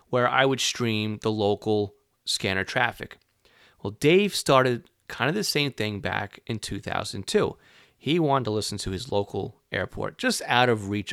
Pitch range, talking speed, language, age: 100-120 Hz, 165 wpm, English, 30-49